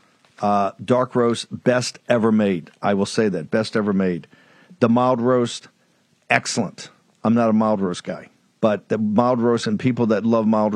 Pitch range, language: 105-125 Hz, English